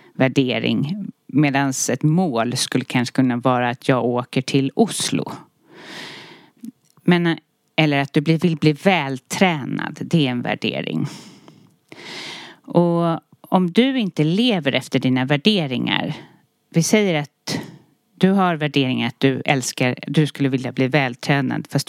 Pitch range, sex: 135-180 Hz, female